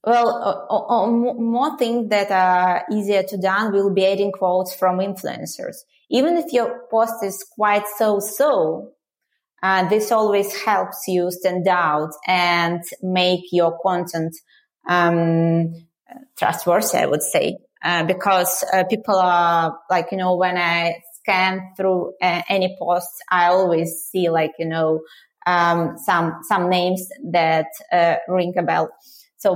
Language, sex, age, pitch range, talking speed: English, female, 20-39, 175-200 Hz, 145 wpm